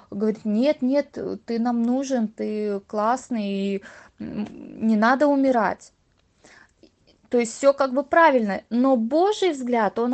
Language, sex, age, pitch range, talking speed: Russian, female, 20-39, 225-285 Hz, 130 wpm